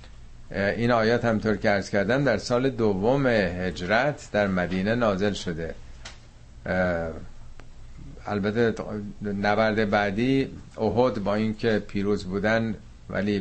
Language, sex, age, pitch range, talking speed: Persian, male, 50-69, 90-115 Hz, 100 wpm